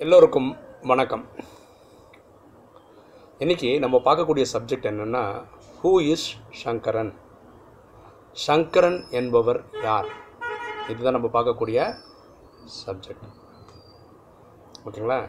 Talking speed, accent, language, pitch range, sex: 70 wpm, native, Tamil, 110-130 Hz, male